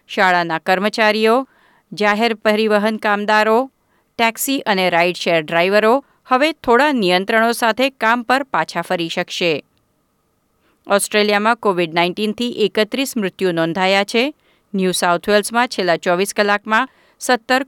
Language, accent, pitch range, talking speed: Gujarati, native, 180-230 Hz, 105 wpm